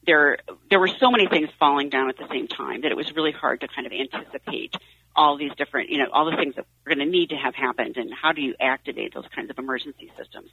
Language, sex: English, female